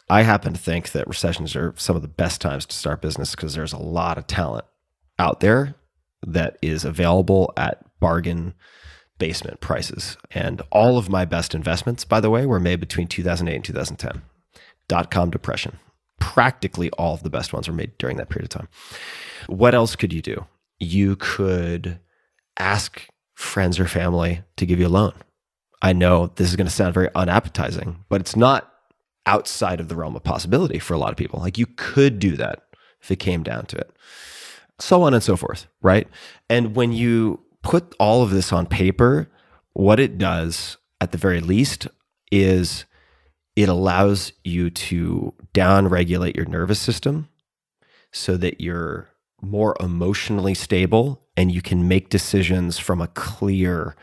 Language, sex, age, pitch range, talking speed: English, male, 30-49, 85-105 Hz, 170 wpm